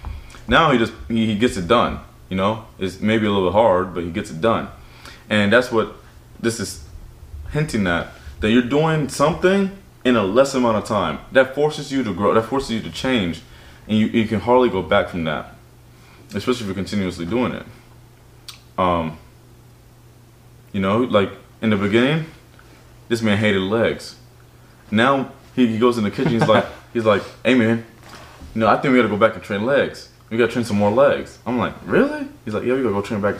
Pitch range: 100-120 Hz